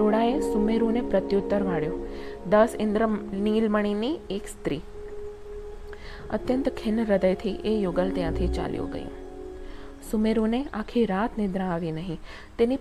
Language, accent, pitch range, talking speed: Gujarati, native, 195-230 Hz, 110 wpm